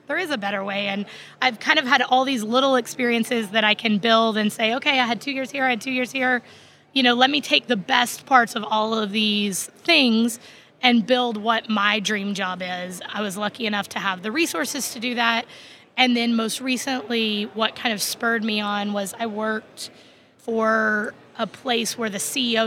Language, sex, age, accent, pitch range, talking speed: English, female, 20-39, American, 215-255 Hz, 215 wpm